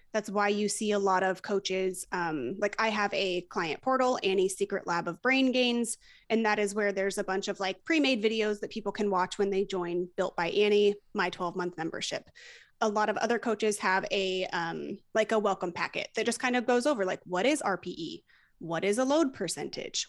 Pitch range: 195-235 Hz